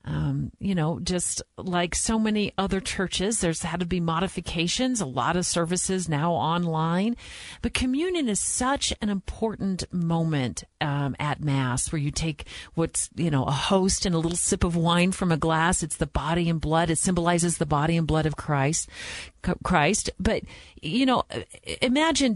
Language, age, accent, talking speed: English, 40-59, American, 175 wpm